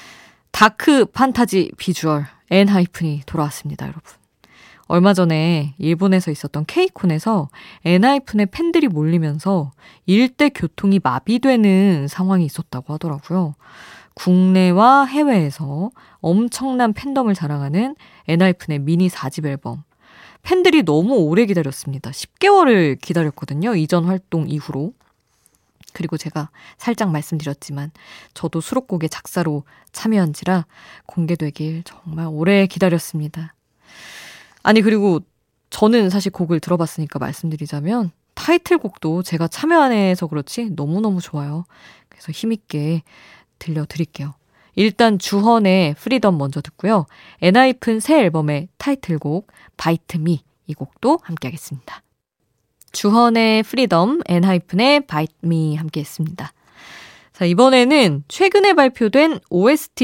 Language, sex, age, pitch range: Korean, female, 20-39, 155-220 Hz